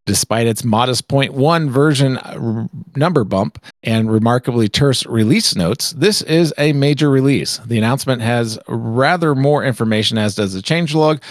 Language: English